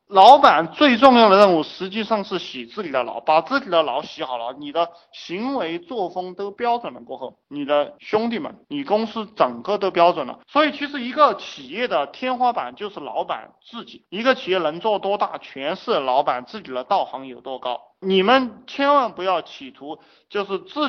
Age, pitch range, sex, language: 20-39, 145-220 Hz, male, Chinese